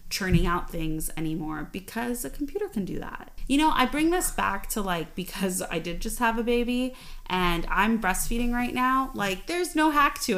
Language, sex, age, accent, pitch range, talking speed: English, female, 20-39, American, 180-250 Hz, 200 wpm